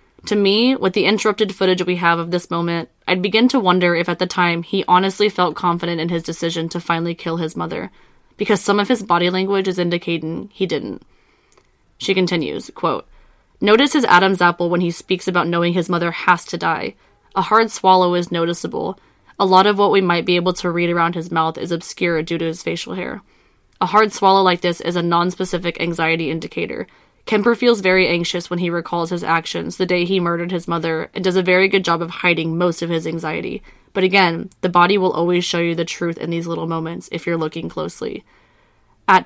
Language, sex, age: English, female, 20-39